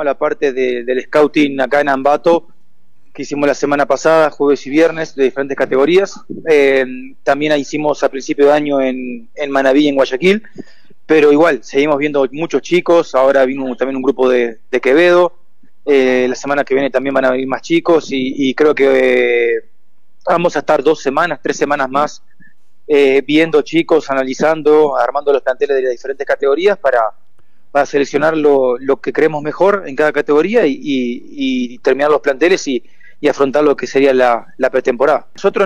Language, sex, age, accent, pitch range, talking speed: Spanish, male, 30-49, Argentinian, 135-155 Hz, 180 wpm